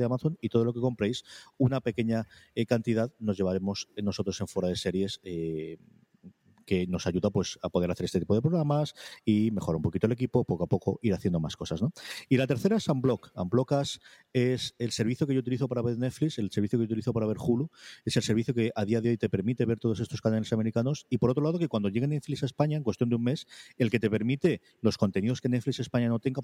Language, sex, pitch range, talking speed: Spanish, male, 105-130 Hz, 245 wpm